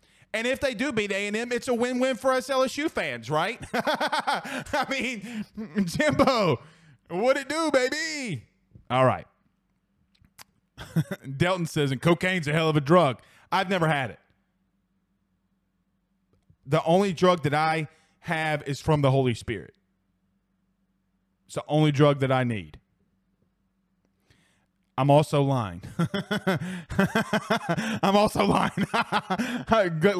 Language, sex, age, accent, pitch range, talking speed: English, male, 30-49, American, 130-200 Hz, 120 wpm